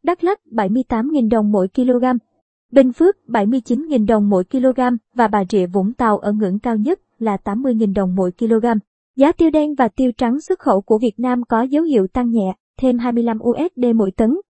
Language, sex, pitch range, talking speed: Vietnamese, male, 220-270 Hz, 195 wpm